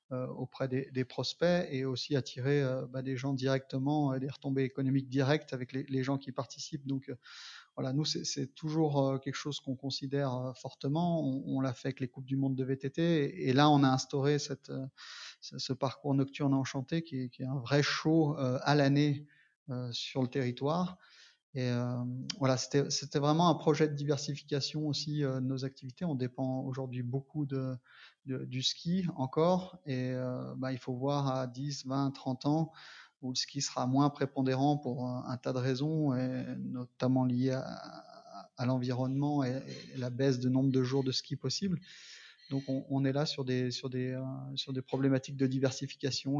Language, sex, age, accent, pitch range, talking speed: French, male, 30-49, French, 130-140 Hz, 190 wpm